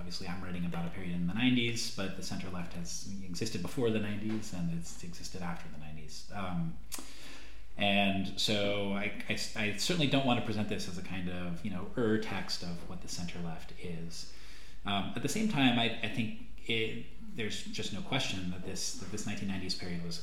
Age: 30-49